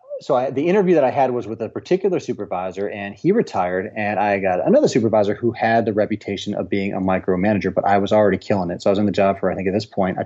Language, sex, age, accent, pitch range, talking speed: English, male, 20-39, American, 100-115 Hz, 275 wpm